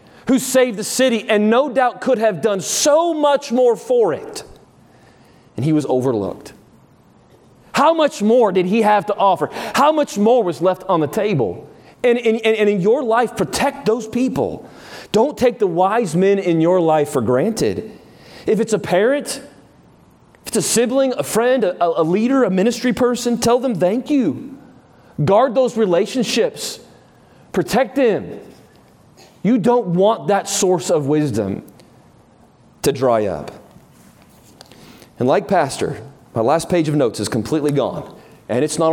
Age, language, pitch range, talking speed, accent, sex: 30-49, English, 150-245 Hz, 155 wpm, American, male